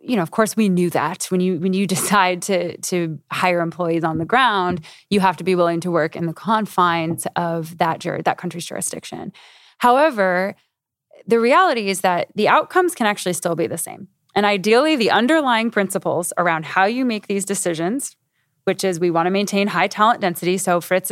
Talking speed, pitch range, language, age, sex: 200 wpm, 175-220 Hz, Dutch, 20-39, female